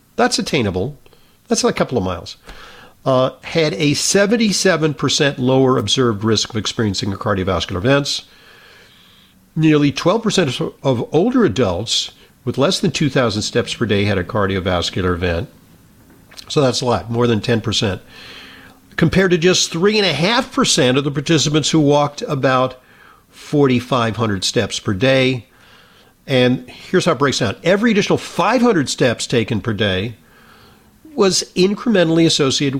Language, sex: English, male